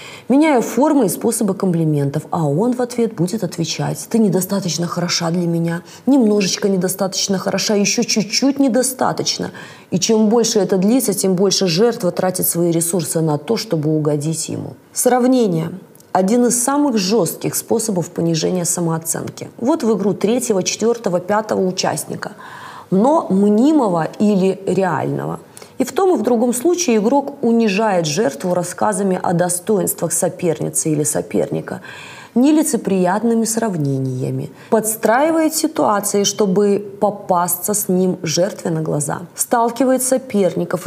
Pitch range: 170-230 Hz